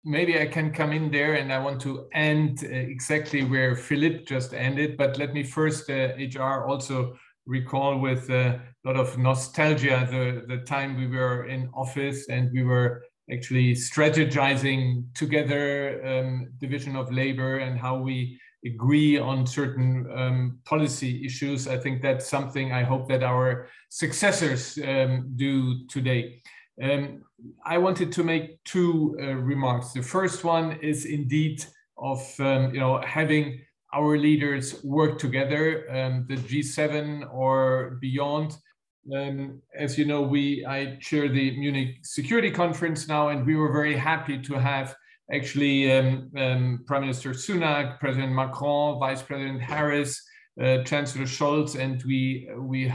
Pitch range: 130-150 Hz